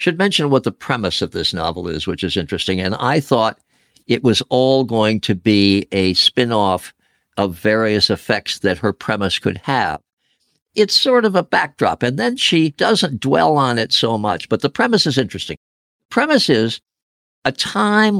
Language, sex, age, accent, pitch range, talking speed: English, male, 60-79, American, 110-155 Hz, 180 wpm